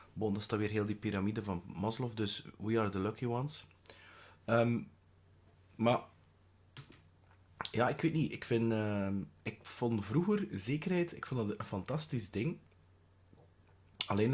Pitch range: 100-125 Hz